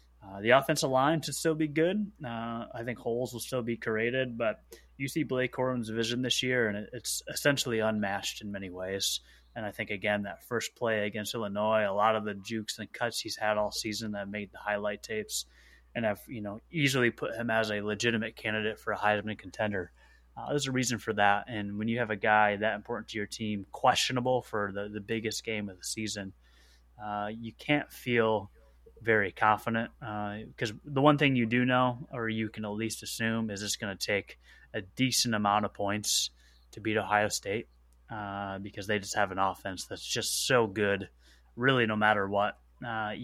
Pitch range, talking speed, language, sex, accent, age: 100-115 Hz, 205 wpm, English, male, American, 20-39